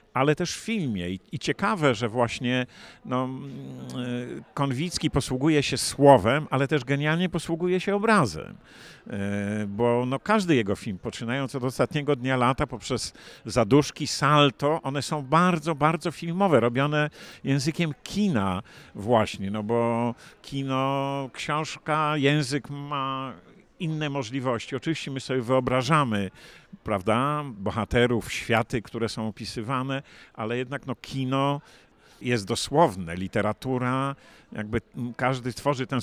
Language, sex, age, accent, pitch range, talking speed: Polish, male, 50-69, native, 115-145 Hz, 110 wpm